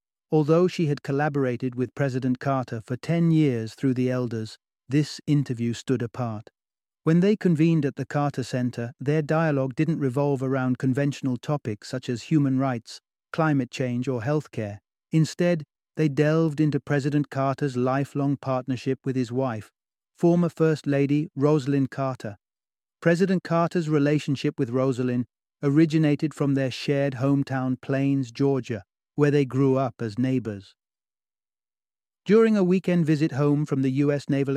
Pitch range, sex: 130-150 Hz, male